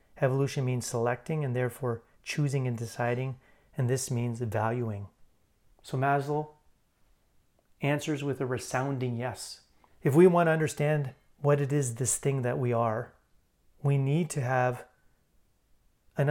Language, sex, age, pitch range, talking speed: English, male, 30-49, 125-145 Hz, 135 wpm